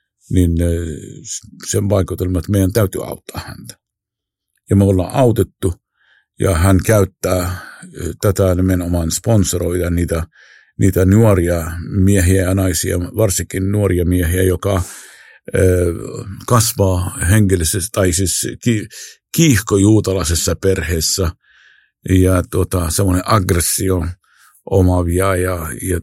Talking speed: 90 wpm